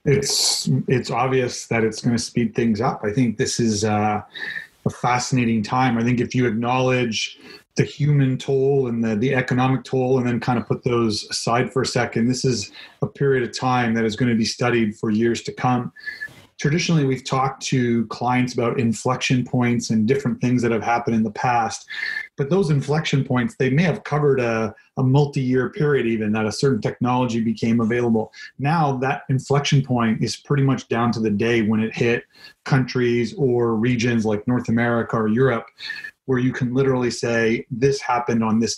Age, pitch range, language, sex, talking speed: 30-49, 115-130 Hz, English, male, 190 wpm